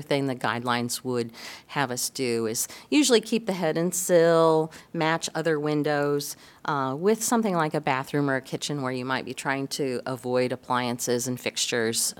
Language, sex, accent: English, female, American